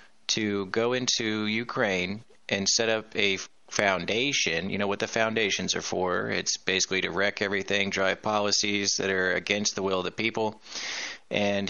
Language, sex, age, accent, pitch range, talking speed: English, male, 30-49, American, 95-110 Hz, 165 wpm